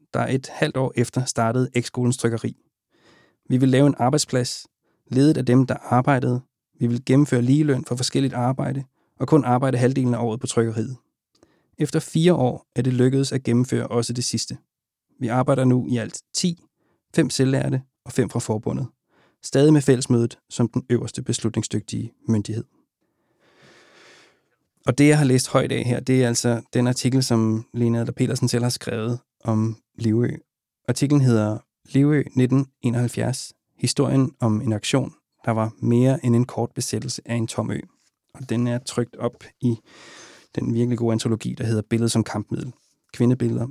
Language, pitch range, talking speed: Danish, 115-130 Hz, 165 wpm